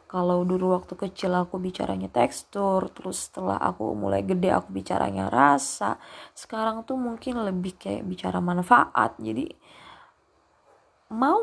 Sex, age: female, 20-39